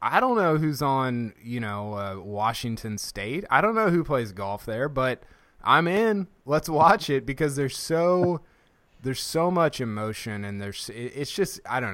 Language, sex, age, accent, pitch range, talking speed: English, male, 20-39, American, 105-140 Hz, 180 wpm